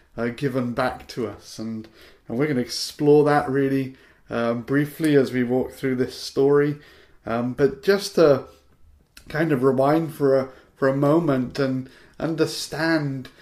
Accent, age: British, 30-49